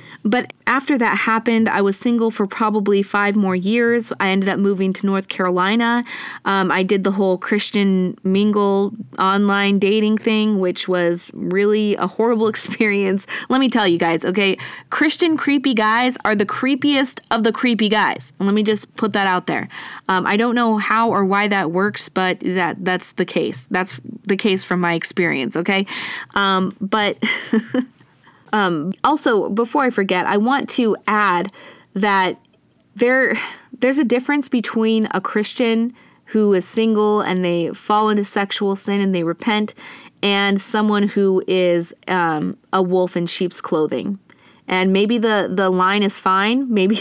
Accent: American